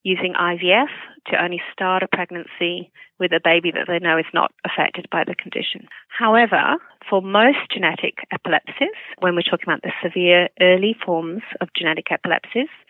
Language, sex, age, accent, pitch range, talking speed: English, female, 30-49, British, 175-210 Hz, 165 wpm